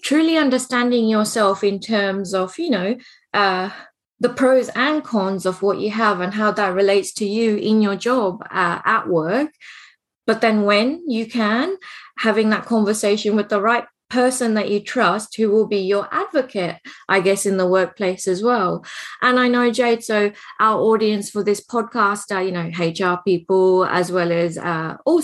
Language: English